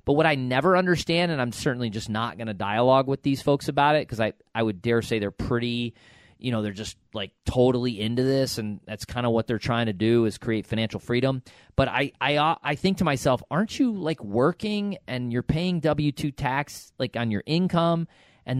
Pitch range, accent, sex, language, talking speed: 120-170 Hz, American, male, English, 220 wpm